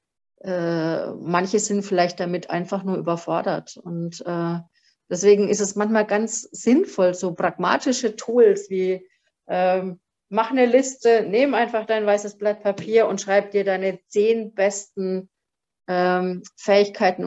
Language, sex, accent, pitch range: German, female, German, 185-240 Hz